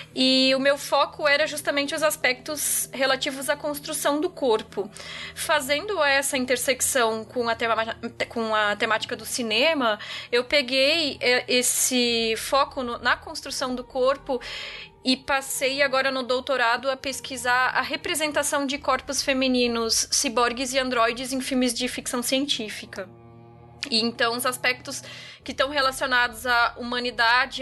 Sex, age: female, 20-39